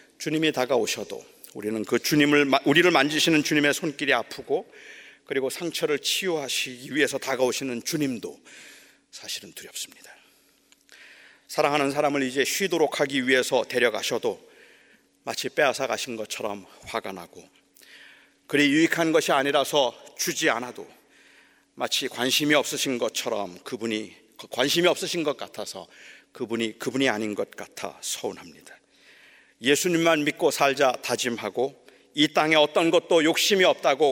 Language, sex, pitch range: Korean, male, 125-165 Hz